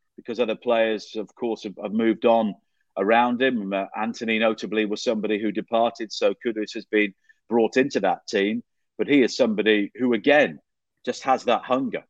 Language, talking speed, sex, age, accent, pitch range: English, 175 wpm, male, 40-59, British, 105-120 Hz